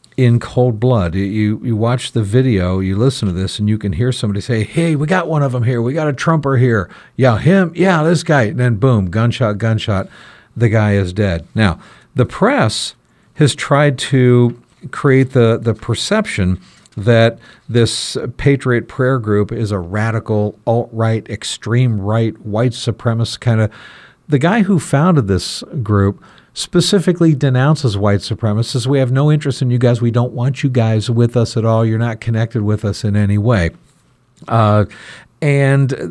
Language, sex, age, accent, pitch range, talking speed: English, male, 50-69, American, 110-140 Hz, 175 wpm